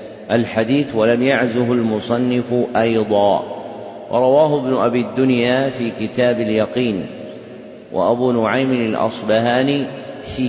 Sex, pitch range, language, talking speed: male, 115-130 Hz, Arabic, 90 wpm